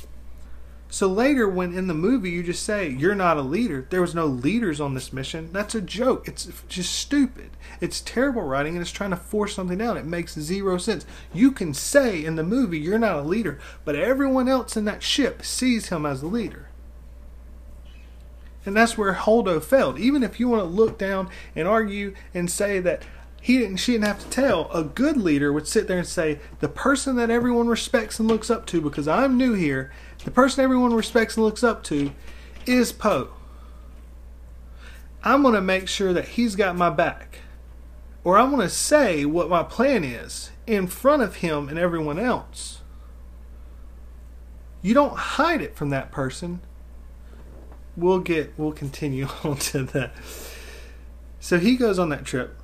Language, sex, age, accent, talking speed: English, male, 30-49, American, 180 wpm